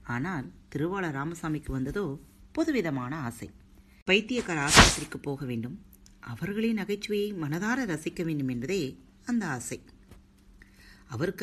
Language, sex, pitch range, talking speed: Tamil, female, 125-190 Hz, 100 wpm